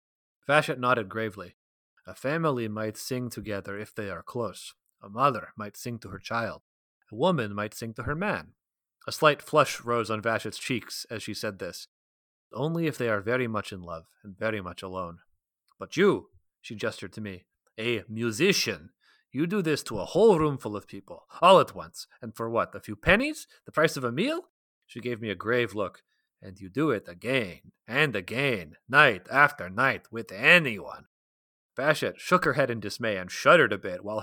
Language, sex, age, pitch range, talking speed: English, male, 30-49, 100-135 Hz, 195 wpm